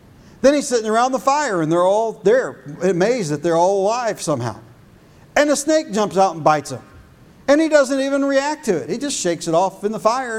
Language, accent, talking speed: English, American, 225 wpm